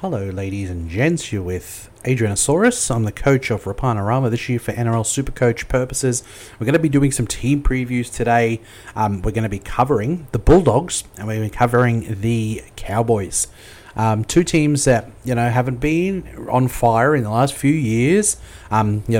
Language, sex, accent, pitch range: English, male, Australian, 105-130 Hz